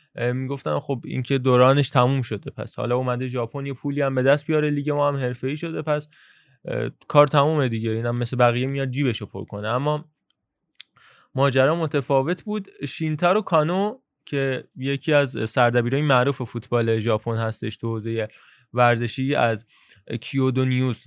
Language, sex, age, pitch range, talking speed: Persian, male, 20-39, 125-155 Hz, 140 wpm